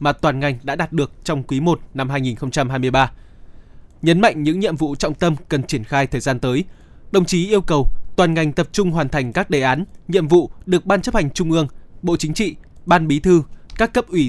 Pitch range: 140-185 Hz